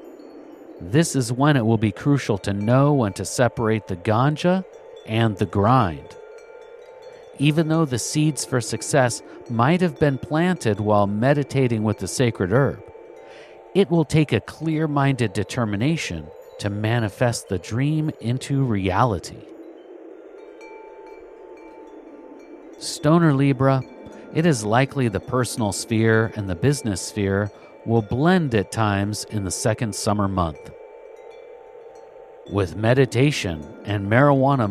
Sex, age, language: male, 50-69, English